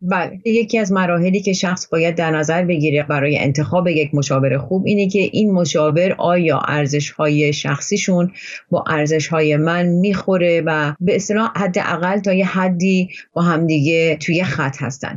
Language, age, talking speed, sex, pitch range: Persian, 30-49, 160 wpm, female, 160-200 Hz